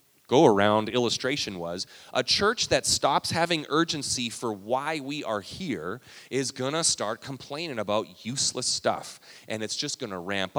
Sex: male